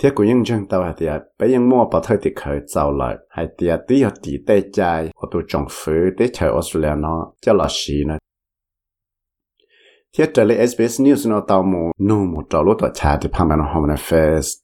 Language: English